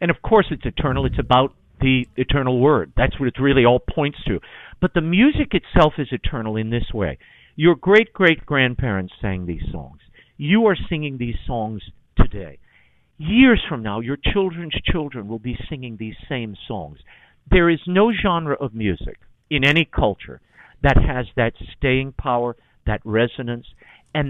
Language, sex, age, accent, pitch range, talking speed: English, male, 50-69, American, 110-155 Hz, 165 wpm